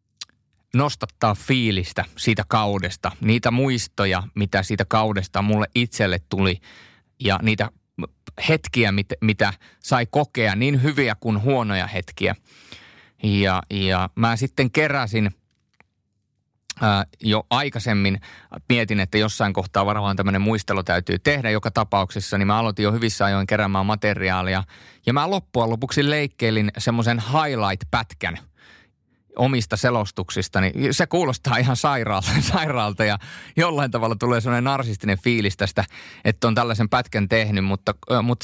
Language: Finnish